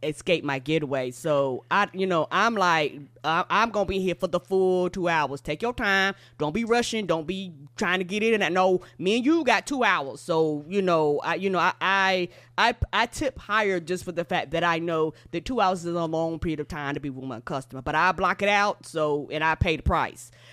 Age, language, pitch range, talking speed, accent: 20-39, English, 160-205 Hz, 245 wpm, American